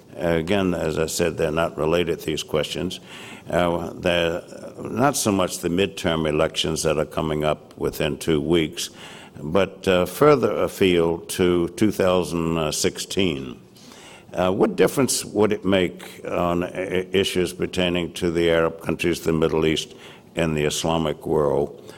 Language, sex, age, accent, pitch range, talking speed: English, male, 60-79, American, 80-95 Hz, 135 wpm